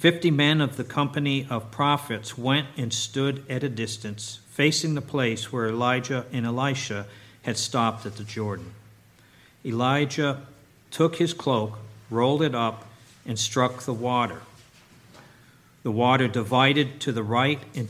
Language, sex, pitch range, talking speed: English, male, 110-135 Hz, 145 wpm